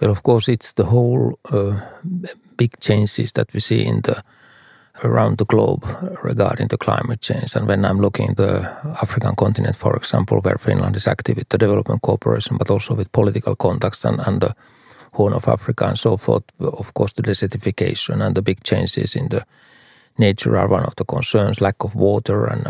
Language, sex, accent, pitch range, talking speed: Finnish, male, native, 100-125 Hz, 195 wpm